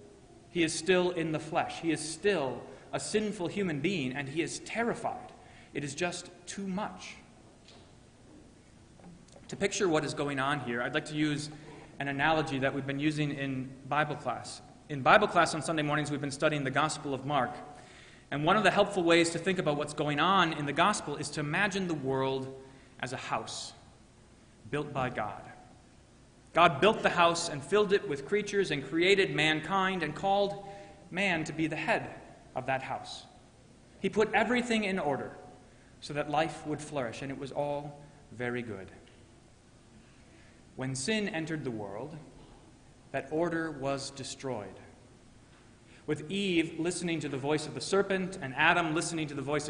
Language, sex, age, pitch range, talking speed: English, male, 30-49, 130-170 Hz, 175 wpm